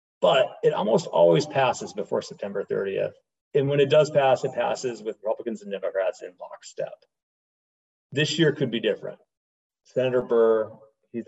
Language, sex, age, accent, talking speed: English, male, 40-59, American, 155 wpm